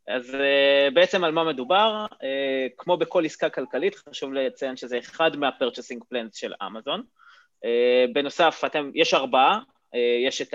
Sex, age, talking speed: male, 20-39, 155 wpm